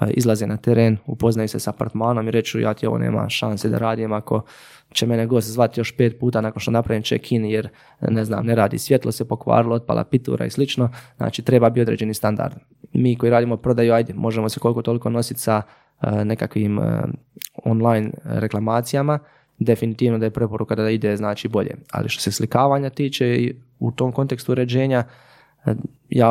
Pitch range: 110-125 Hz